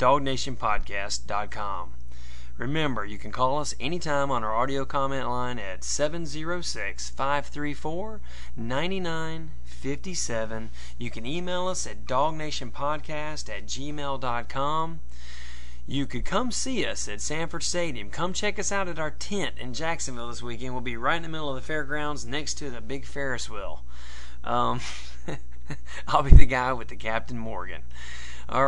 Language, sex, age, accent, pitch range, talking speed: English, male, 30-49, American, 105-145 Hz, 140 wpm